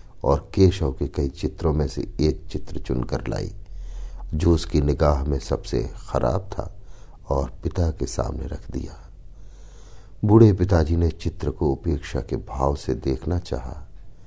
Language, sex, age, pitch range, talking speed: Hindi, male, 50-69, 70-100 Hz, 145 wpm